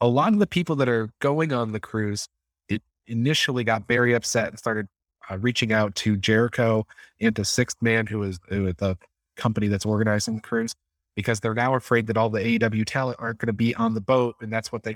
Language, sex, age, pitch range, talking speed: English, male, 30-49, 100-120 Hz, 225 wpm